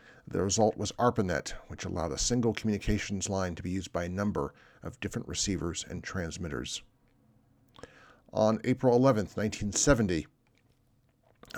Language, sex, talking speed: English, male, 130 wpm